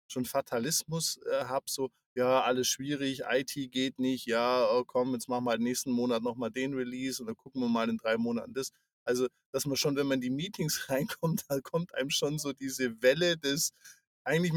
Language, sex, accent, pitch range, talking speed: German, male, German, 120-155 Hz, 205 wpm